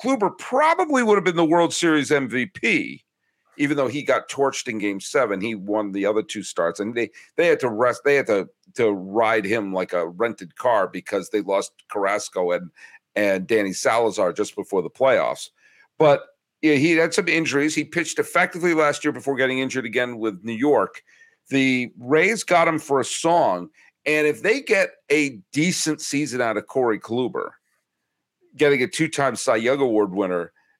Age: 50-69